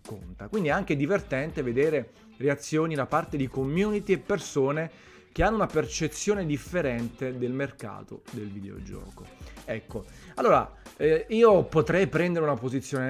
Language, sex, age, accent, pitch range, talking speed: Italian, male, 30-49, native, 120-155 Hz, 140 wpm